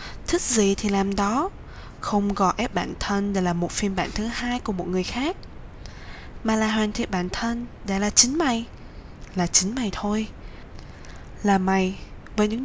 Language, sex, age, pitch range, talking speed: Vietnamese, female, 20-39, 190-220 Hz, 185 wpm